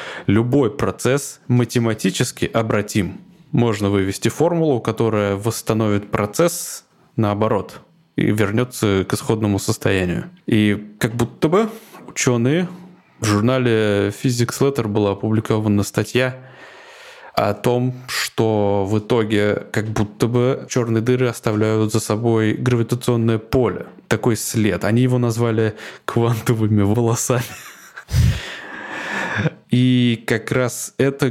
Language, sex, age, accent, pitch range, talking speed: Russian, male, 20-39, native, 105-125 Hz, 105 wpm